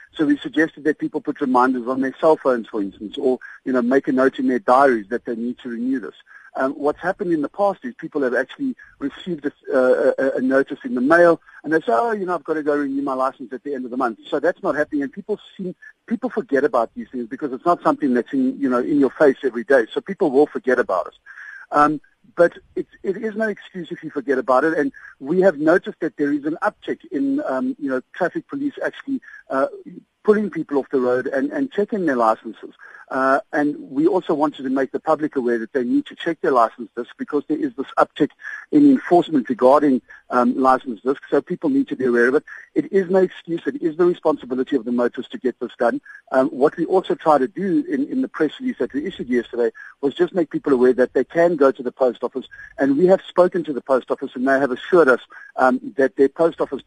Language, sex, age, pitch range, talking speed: English, male, 50-69, 130-205 Hz, 245 wpm